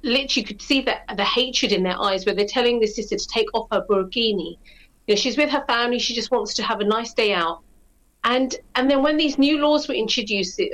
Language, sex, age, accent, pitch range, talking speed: English, female, 40-59, British, 205-250 Hz, 245 wpm